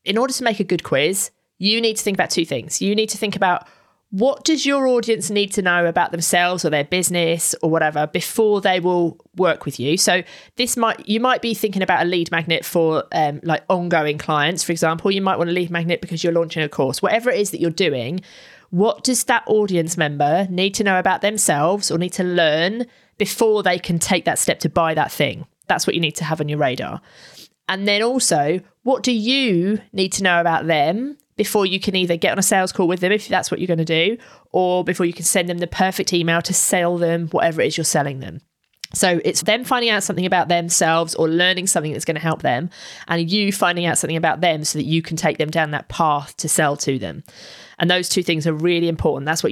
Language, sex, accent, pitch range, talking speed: English, female, British, 165-205 Hz, 240 wpm